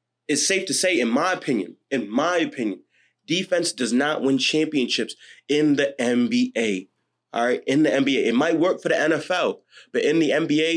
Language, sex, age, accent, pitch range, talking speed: English, male, 20-39, American, 125-150 Hz, 185 wpm